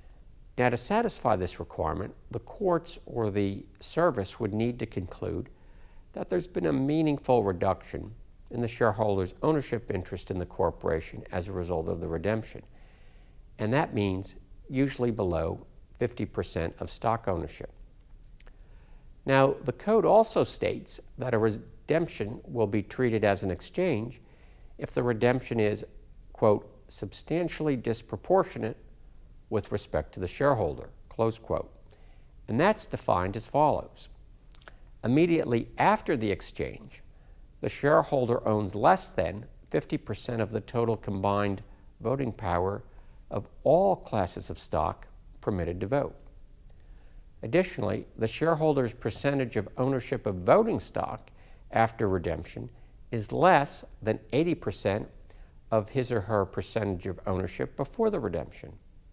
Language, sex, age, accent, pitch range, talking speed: English, male, 50-69, American, 95-125 Hz, 125 wpm